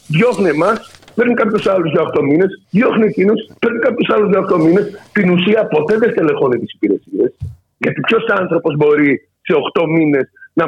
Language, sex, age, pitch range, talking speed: Greek, male, 50-69, 155-230 Hz, 175 wpm